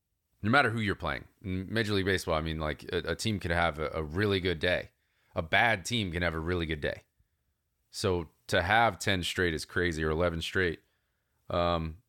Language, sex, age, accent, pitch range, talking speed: English, male, 30-49, American, 85-120 Hz, 205 wpm